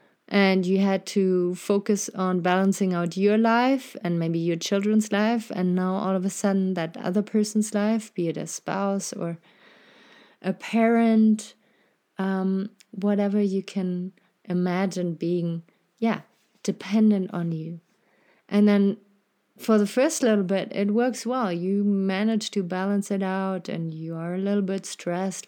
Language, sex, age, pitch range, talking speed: English, female, 30-49, 175-205 Hz, 155 wpm